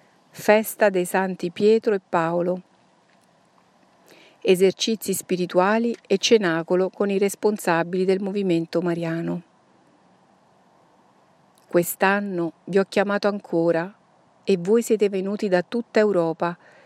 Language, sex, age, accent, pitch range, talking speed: Italian, female, 50-69, native, 175-200 Hz, 100 wpm